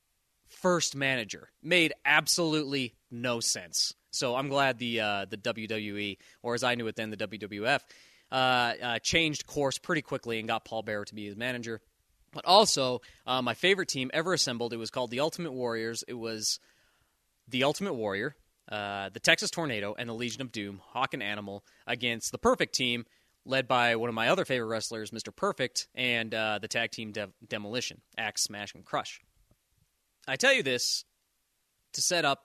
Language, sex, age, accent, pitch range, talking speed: English, male, 20-39, American, 110-140 Hz, 180 wpm